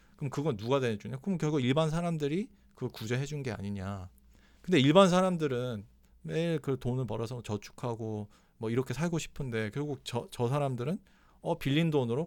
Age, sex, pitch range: 40-59, male, 105-145 Hz